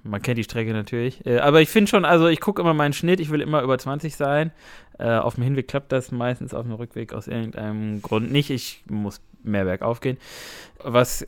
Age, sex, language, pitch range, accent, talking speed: 20-39, male, German, 110-150 Hz, German, 225 wpm